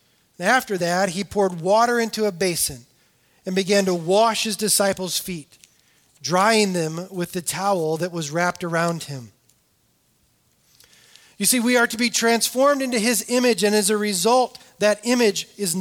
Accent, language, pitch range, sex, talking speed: American, English, 175-225 Hz, male, 160 wpm